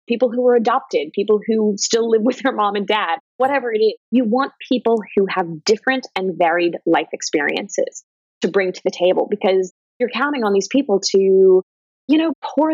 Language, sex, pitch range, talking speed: English, female, 190-240 Hz, 195 wpm